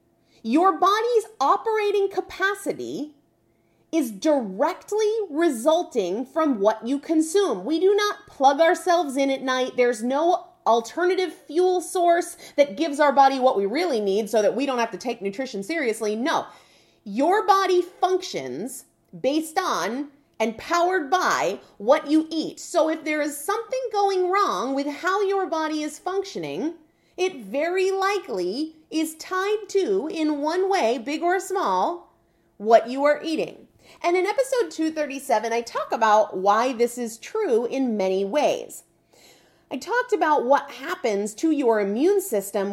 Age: 30-49